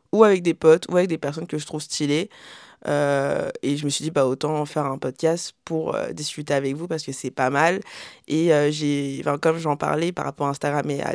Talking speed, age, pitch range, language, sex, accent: 250 wpm, 20-39, 145-180 Hz, French, female, French